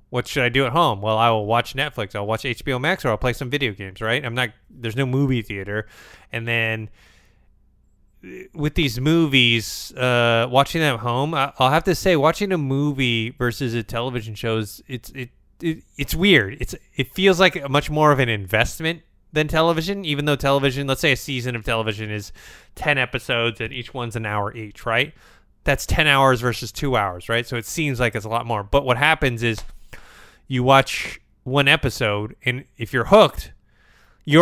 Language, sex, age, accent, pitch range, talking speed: English, male, 20-39, American, 110-135 Hz, 200 wpm